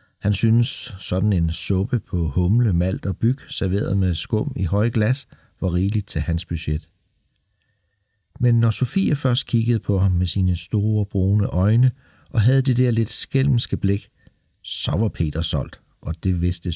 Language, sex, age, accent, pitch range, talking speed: Danish, male, 60-79, native, 85-120 Hz, 170 wpm